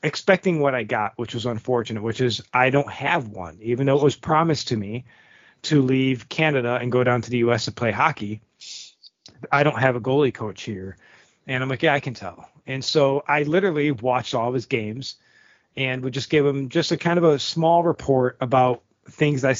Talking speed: 215 wpm